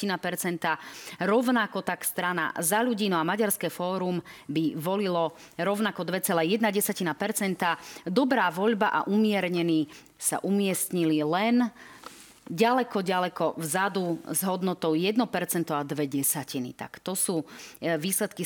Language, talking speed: Slovak, 105 wpm